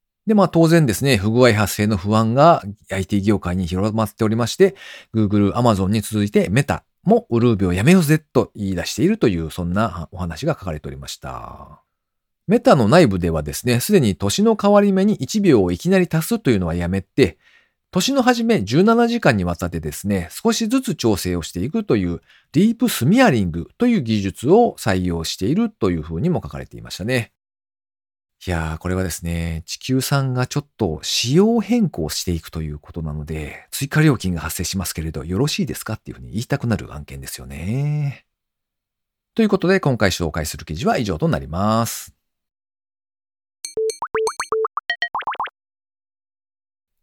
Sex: male